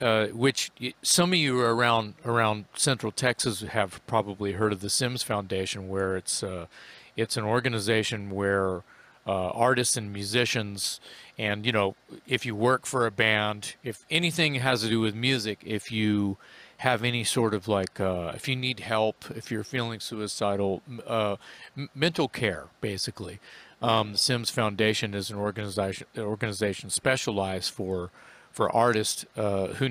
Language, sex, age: English, male, 40-59